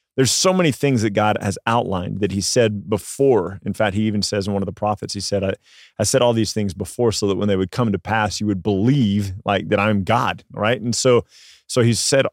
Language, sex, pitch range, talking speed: English, male, 100-120 Hz, 255 wpm